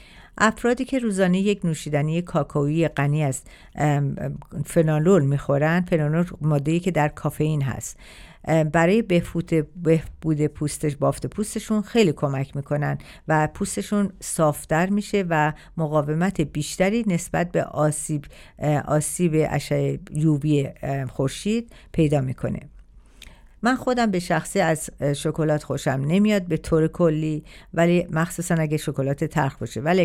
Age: 50-69